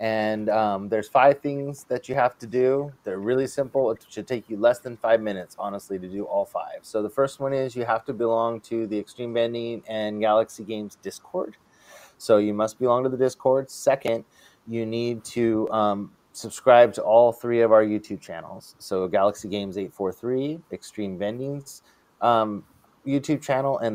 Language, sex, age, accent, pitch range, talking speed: English, male, 30-49, American, 105-120 Hz, 185 wpm